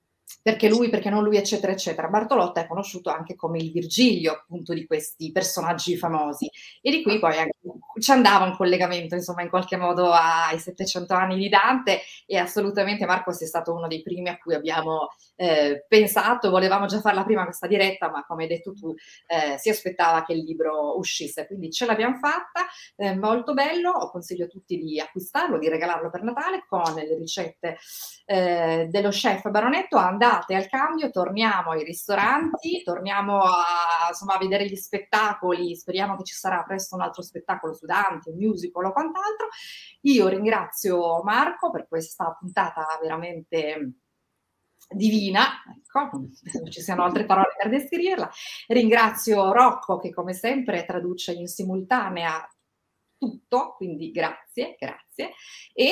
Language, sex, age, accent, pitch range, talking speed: Italian, female, 30-49, native, 170-215 Hz, 155 wpm